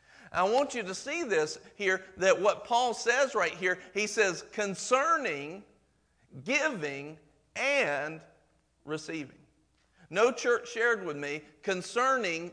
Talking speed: 120 wpm